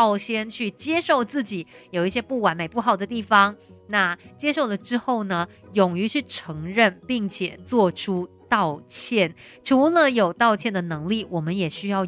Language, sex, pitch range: Chinese, female, 180-245 Hz